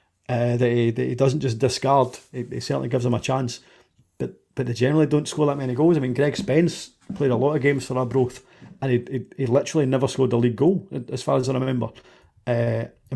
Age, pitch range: 40-59, 125-155 Hz